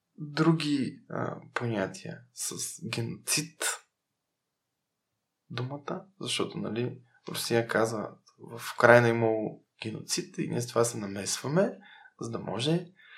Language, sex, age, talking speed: Bulgarian, male, 20-39, 110 wpm